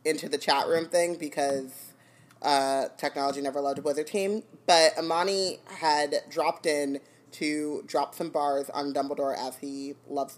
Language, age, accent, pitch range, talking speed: English, 30-49, American, 145-170 Hz, 155 wpm